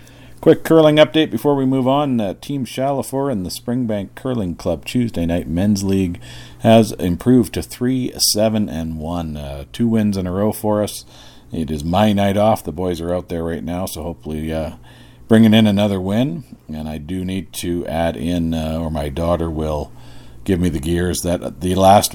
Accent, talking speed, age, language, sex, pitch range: American, 190 wpm, 50-69, English, male, 80-105 Hz